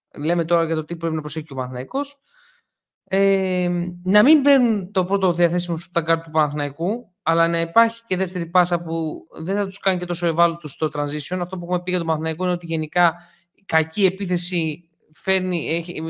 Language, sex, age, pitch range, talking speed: Greek, male, 20-39, 165-225 Hz, 195 wpm